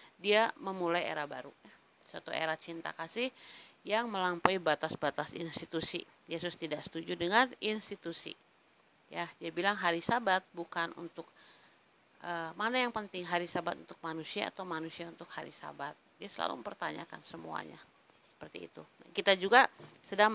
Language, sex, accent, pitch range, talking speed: Indonesian, female, native, 165-200 Hz, 135 wpm